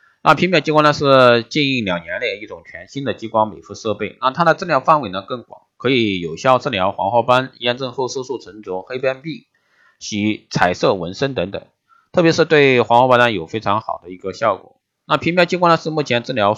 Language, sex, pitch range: Chinese, male, 100-155 Hz